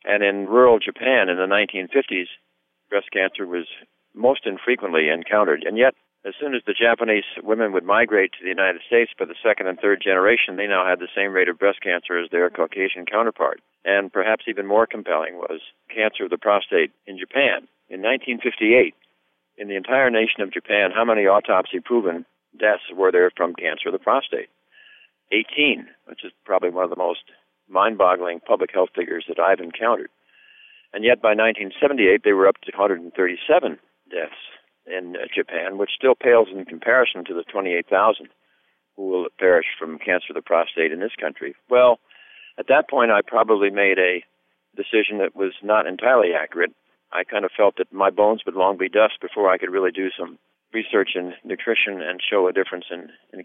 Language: English